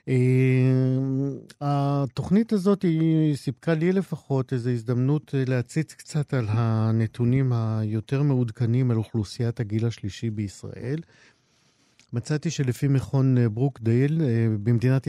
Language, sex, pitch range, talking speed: Hebrew, male, 115-140 Hz, 105 wpm